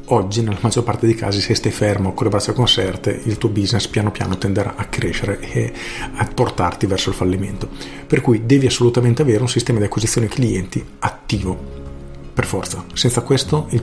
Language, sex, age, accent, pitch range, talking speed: Italian, male, 40-59, native, 100-125 Hz, 185 wpm